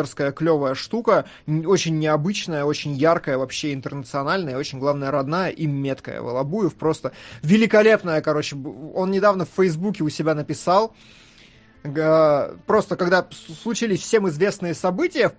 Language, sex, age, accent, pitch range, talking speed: Russian, male, 20-39, native, 150-225 Hz, 115 wpm